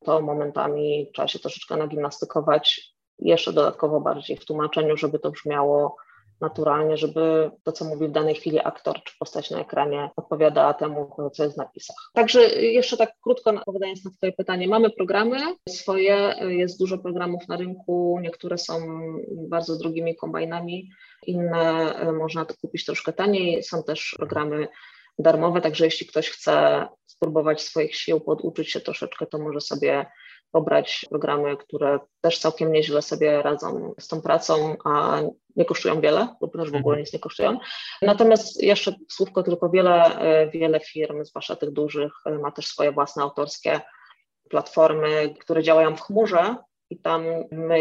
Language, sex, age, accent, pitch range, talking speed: Polish, female, 20-39, native, 150-180 Hz, 155 wpm